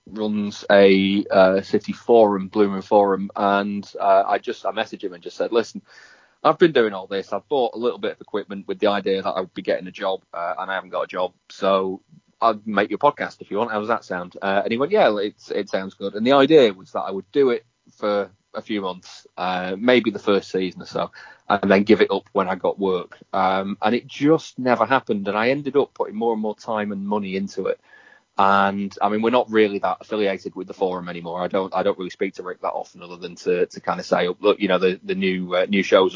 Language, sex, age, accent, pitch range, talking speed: English, male, 30-49, British, 95-115 Hz, 255 wpm